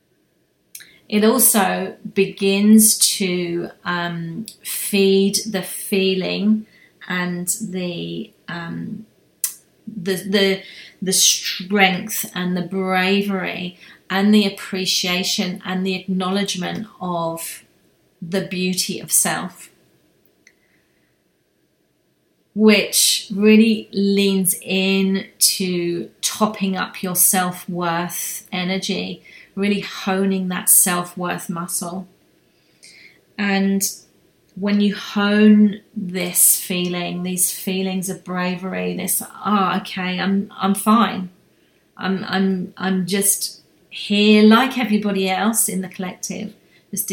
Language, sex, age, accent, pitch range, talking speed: English, female, 30-49, British, 185-205 Hz, 95 wpm